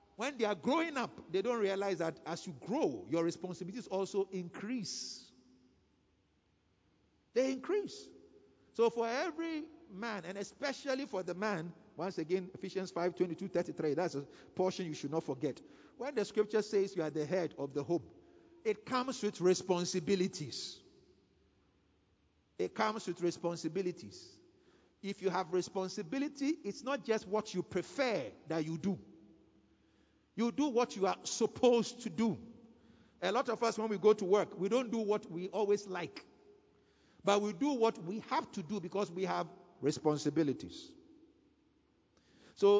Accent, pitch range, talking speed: Nigerian, 175-230 Hz, 155 wpm